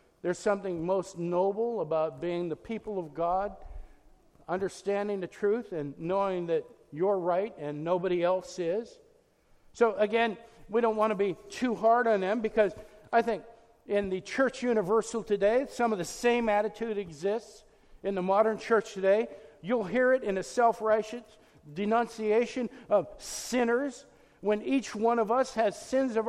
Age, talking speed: 50-69, 155 wpm